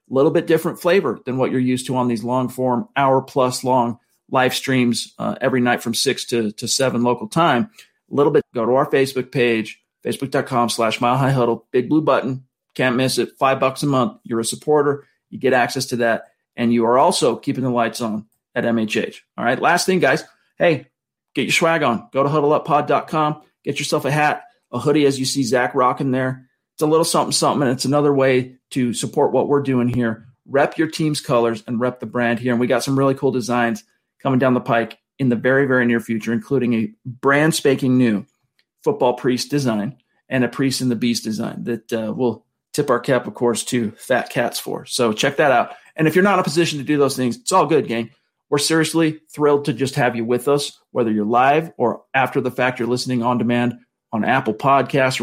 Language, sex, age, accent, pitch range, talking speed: English, male, 40-59, American, 120-140 Hz, 215 wpm